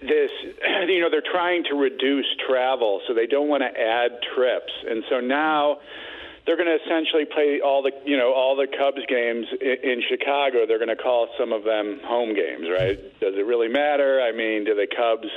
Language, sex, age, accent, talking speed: English, male, 50-69, American, 205 wpm